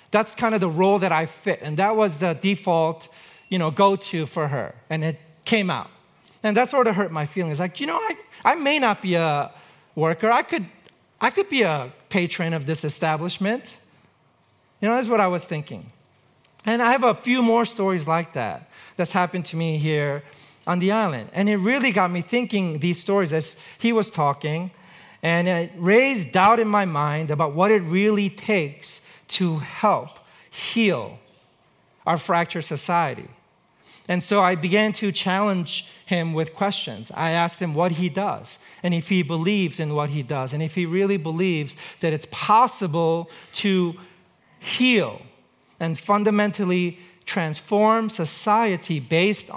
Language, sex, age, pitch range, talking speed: English, male, 40-59, 160-205 Hz, 170 wpm